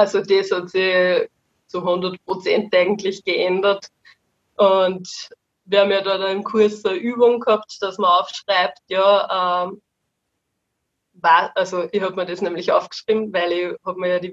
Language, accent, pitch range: German, German, 185-220 Hz